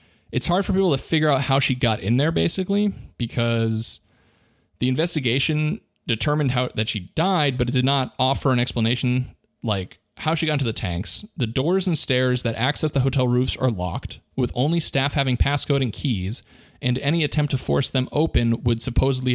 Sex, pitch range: male, 110-145 Hz